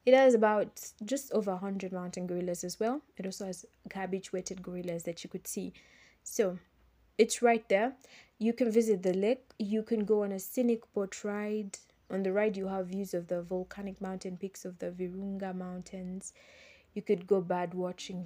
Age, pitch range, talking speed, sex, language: 20-39, 185-220 Hz, 185 wpm, female, English